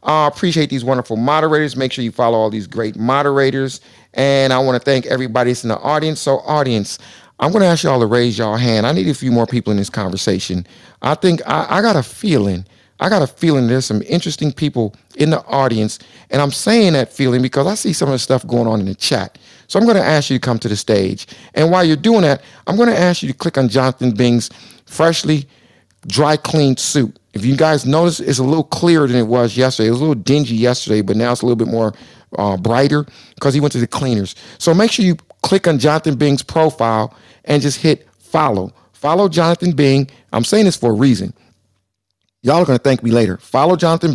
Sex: male